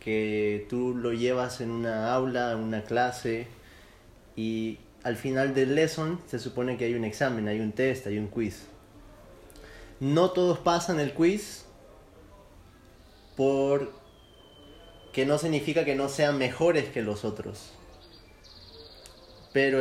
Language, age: Spanish, 20-39